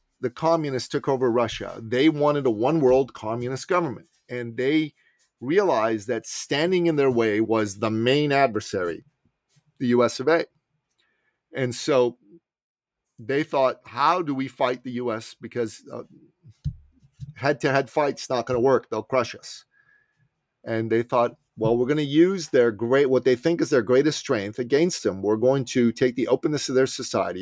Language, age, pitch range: English, 40-59, 115-145 Hz